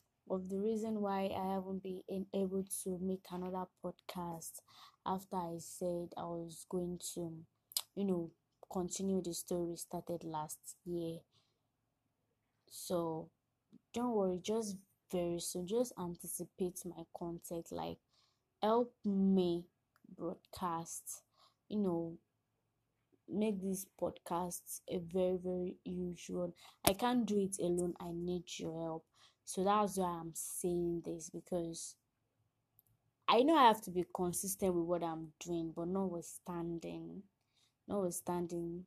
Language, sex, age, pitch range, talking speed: English, female, 20-39, 165-190 Hz, 125 wpm